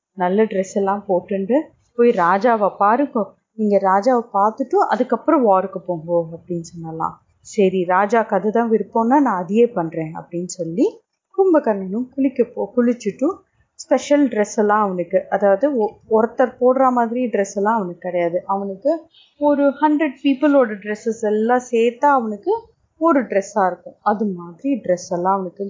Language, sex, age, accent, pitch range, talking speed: Tamil, female, 30-49, native, 195-275 Hz, 125 wpm